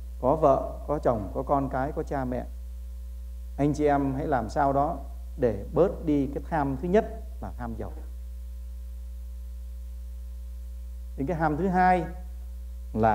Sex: male